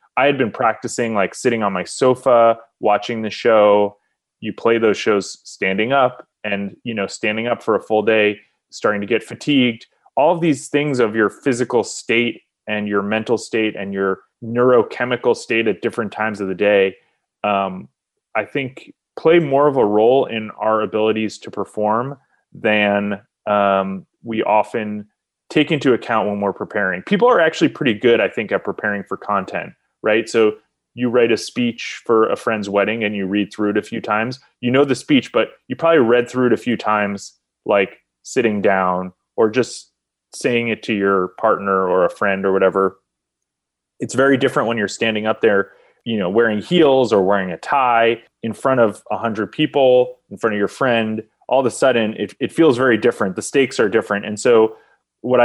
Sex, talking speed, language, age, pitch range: male, 190 wpm, English, 30-49, 100-125 Hz